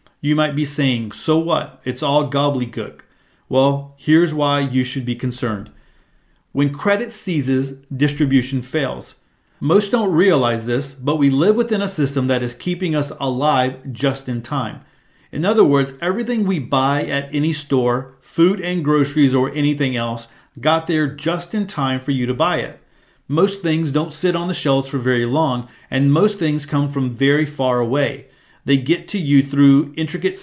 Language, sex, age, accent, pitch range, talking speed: English, male, 40-59, American, 135-160 Hz, 175 wpm